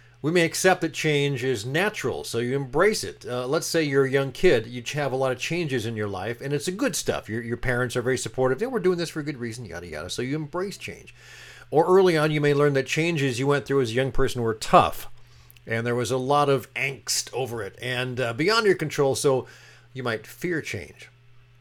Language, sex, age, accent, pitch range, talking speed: English, male, 50-69, American, 120-145 Hz, 245 wpm